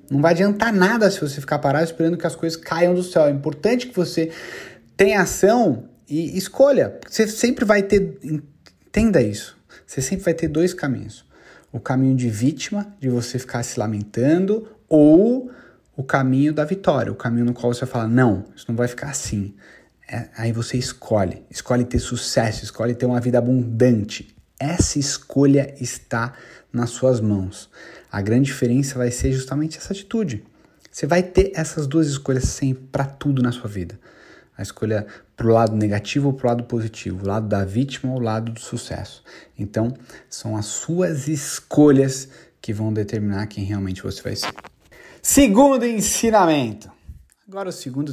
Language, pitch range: Portuguese, 115-165 Hz